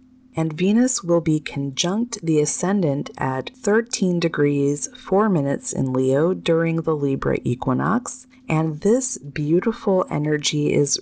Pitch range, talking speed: 150-200 Hz, 125 wpm